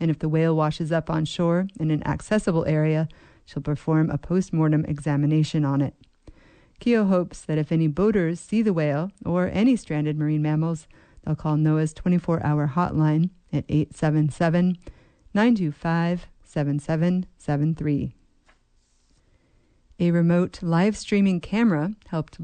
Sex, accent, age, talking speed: female, American, 40-59, 125 wpm